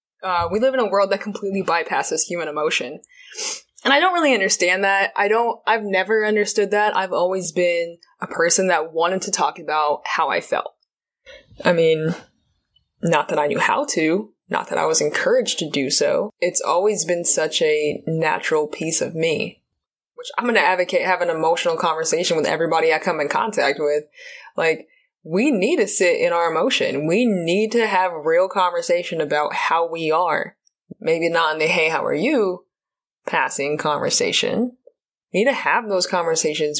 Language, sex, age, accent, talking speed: English, female, 20-39, American, 180 wpm